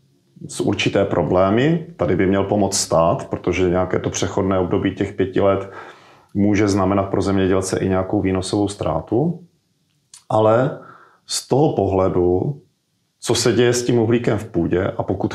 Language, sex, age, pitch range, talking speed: Czech, male, 40-59, 95-120 Hz, 150 wpm